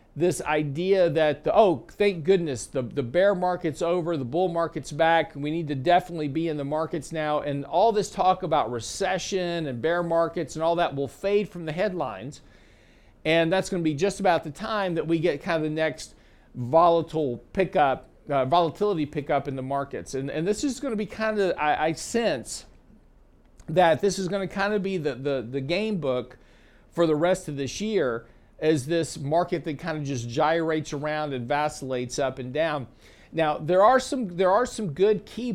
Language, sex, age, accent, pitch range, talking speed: English, male, 50-69, American, 140-185 Hz, 200 wpm